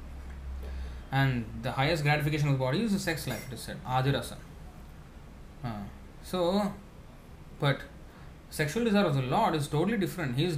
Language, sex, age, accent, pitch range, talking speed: English, male, 20-39, Indian, 100-155 Hz, 155 wpm